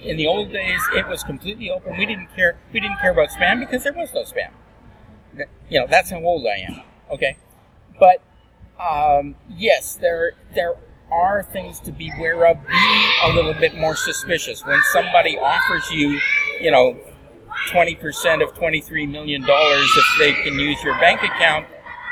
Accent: American